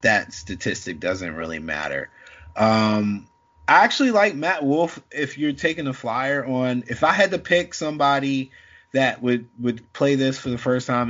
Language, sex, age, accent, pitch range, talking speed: English, male, 20-39, American, 105-130 Hz, 175 wpm